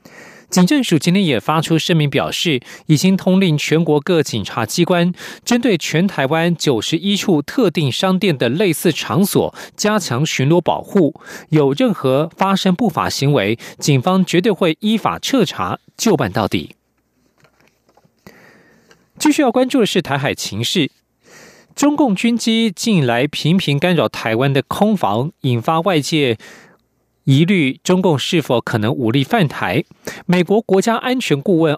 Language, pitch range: German, 140-190 Hz